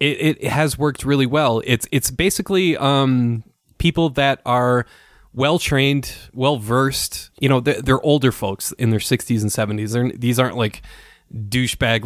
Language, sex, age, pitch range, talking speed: English, male, 20-39, 110-135 Hz, 165 wpm